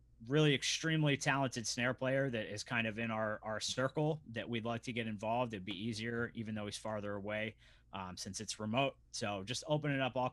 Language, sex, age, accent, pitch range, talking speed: English, male, 30-49, American, 105-125 Hz, 215 wpm